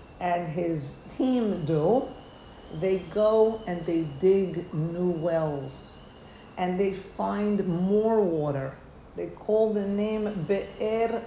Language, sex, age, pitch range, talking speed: English, female, 50-69, 165-220 Hz, 110 wpm